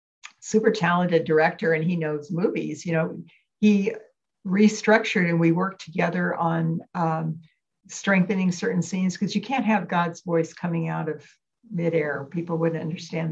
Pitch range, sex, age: 160-175 Hz, female, 60-79